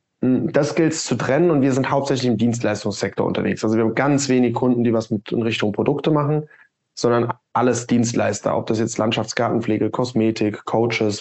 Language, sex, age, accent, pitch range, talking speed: German, male, 20-39, German, 120-150 Hz, 170 wpm